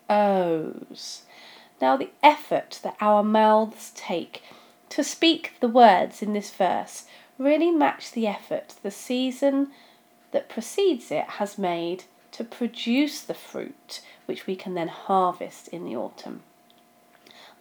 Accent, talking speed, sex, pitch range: British, 130 wpm, female, 190-280 Hz